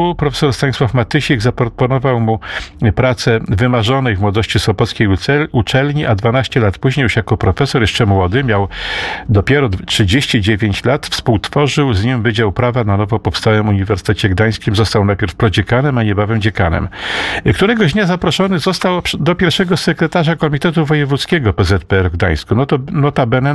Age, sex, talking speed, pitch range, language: 50-69, male, 140 wpm, 110-165 Hz, Polish